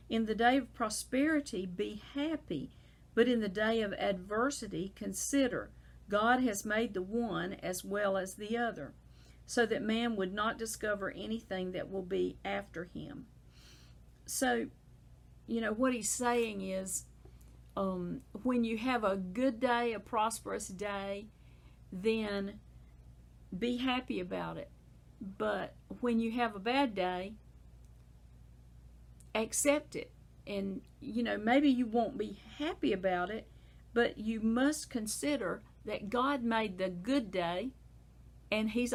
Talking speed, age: 135 wpm, 50-69